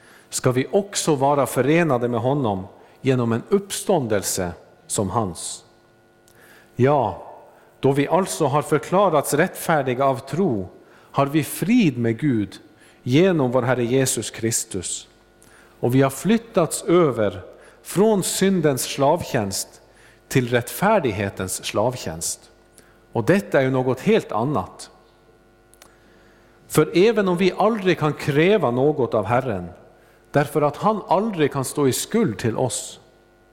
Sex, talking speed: male, 125 wpm